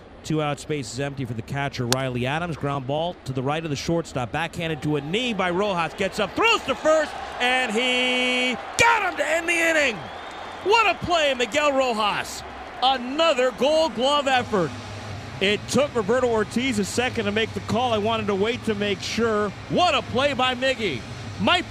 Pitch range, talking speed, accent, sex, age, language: 120-200 Hz, 190 wpm, American, male, 40-59, English